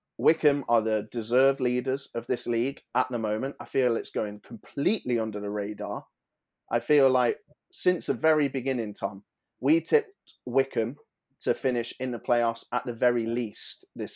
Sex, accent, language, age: male, British, English, 30-49